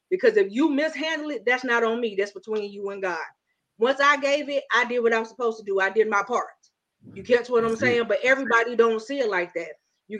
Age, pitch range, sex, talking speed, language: 30-49, 230-310 Hz, female, 245 wpm, English